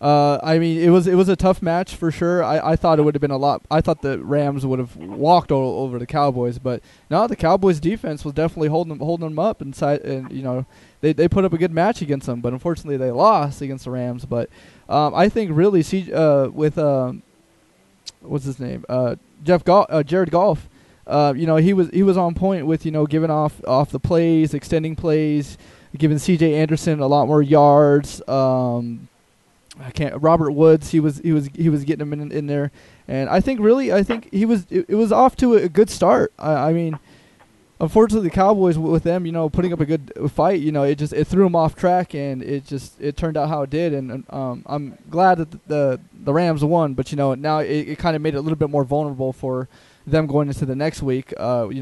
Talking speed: 240 wpm